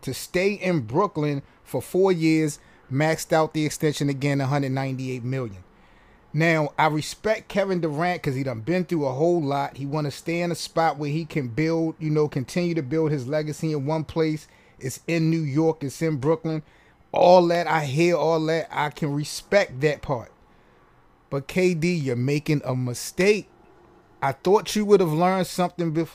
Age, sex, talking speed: 30-49, male, 185 wpm